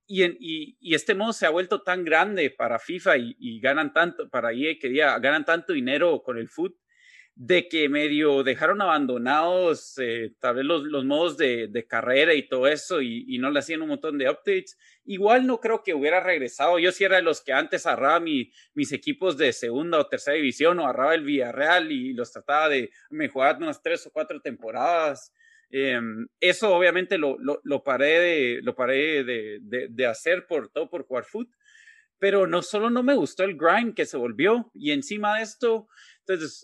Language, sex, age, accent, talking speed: Spanish, male, 30-49, Mexican, 205 wpm